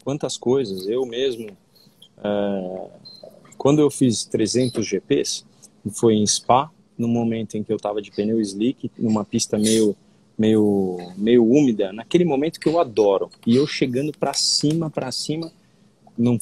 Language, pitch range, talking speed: Portuguese, 110-150 Hz, 150 wpm